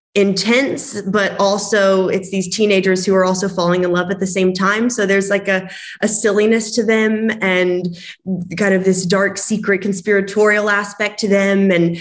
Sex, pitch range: female, 180-210 Hz